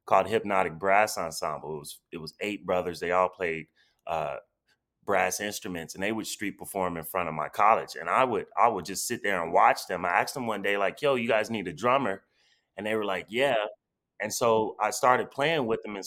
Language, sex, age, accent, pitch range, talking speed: English, male, 20-39, American, 90-115 Hz, 230 wpm